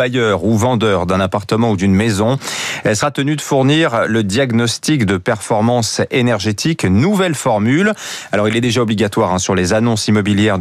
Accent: French